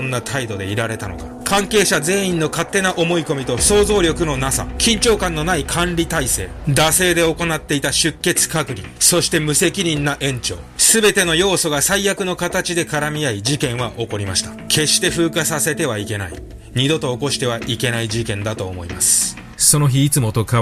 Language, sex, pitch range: Japanese, male, 100-145 Hz